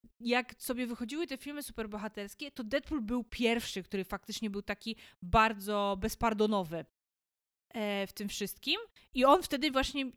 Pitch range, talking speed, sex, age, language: 215-265 Hz, 135 wpm, female, 20-39, Polish